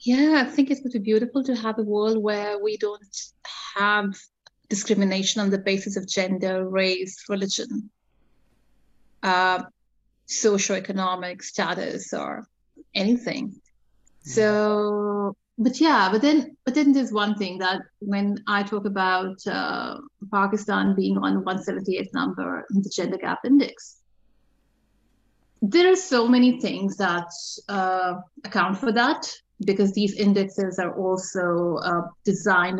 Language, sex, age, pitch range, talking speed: English, female, 30-49, 190-230 Hz, 125 wpm